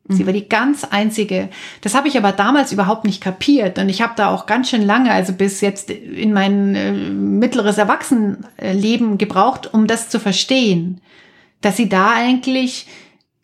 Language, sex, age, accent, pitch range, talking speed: German, female, 30-49, German, 195-240 Hz, 170 wpm